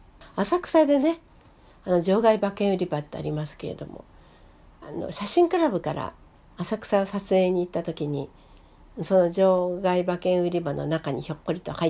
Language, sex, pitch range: Japanese, female, 155-200 Hz